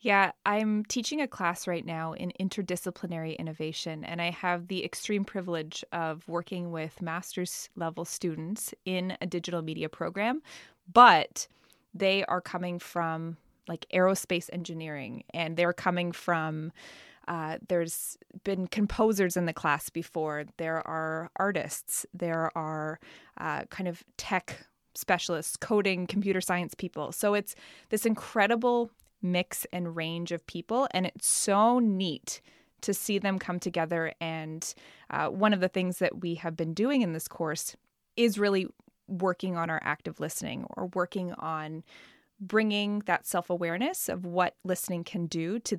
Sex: female